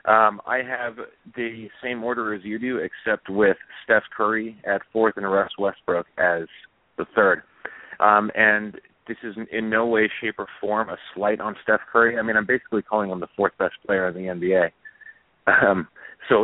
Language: English